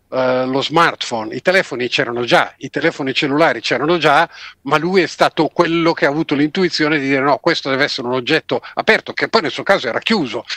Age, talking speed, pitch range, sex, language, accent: 50-69, 210 wpm, 140-170 Hz, male, Italian, native